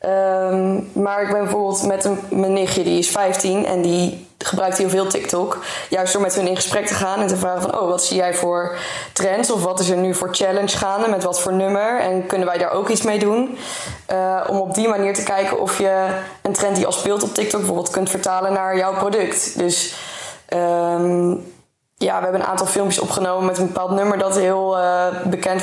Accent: Dutch